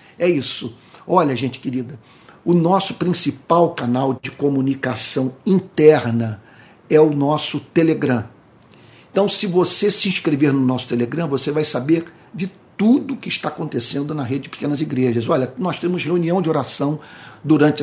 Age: 50-69